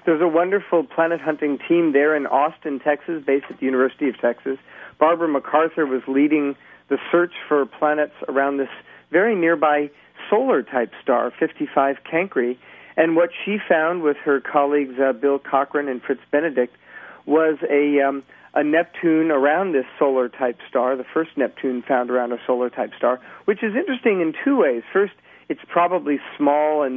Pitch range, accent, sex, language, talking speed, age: 130-165 Hz, American, male, English, 160 wpm, 50-69